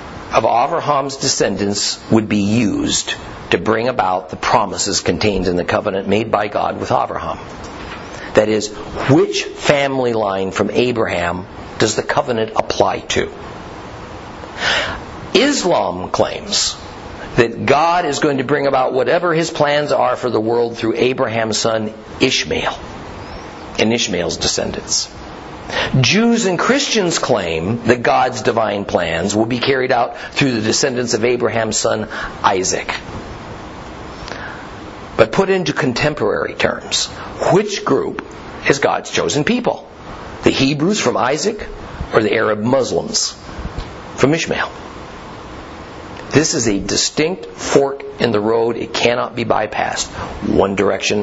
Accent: American